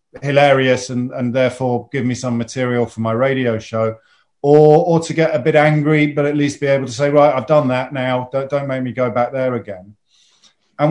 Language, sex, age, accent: English, male, 50-69, British